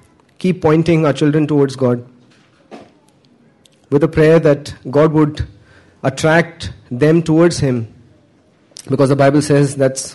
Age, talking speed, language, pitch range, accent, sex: 30-49, 125 wpm, English, 125-150 Hz, Indian, male